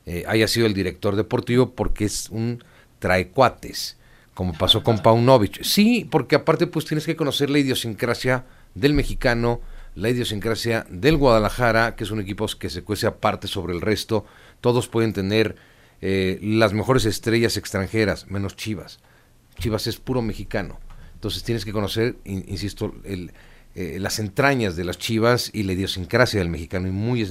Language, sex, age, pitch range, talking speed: Spanish, male, 40-59, 95-125 Hz, 165 wpm